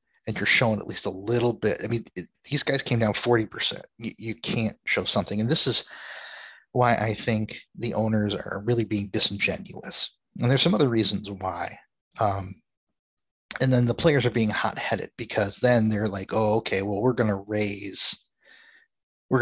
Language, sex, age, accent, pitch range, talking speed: English, male, 30-49, American, 100-120 Hz, 180 wpm